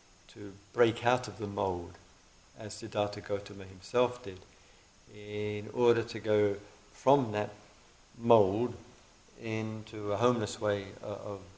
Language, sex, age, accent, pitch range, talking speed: English, male, 50-69, British, 95-115 Hz, 120 wpm